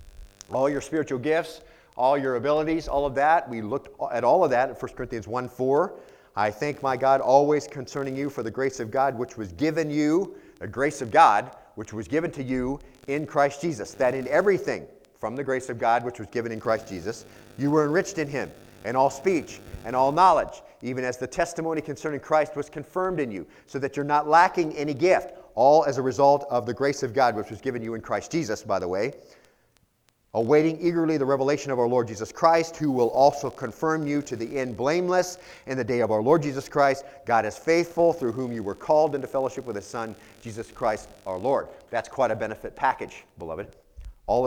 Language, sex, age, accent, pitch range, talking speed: English, male, 40-59, American, 120-155 Hz, 215 wpm